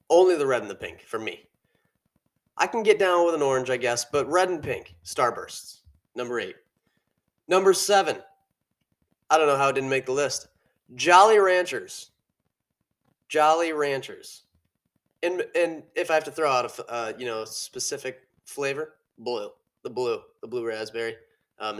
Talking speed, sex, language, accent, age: 165 wpm, male, English, American, 30-49